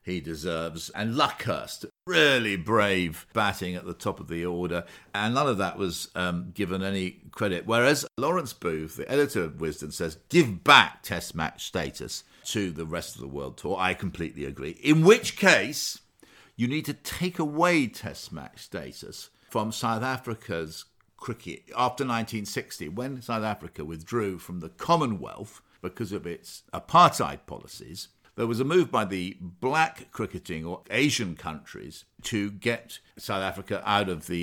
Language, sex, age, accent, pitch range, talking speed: English, male, 50-69, British, 90-115 Hz, 160 wpm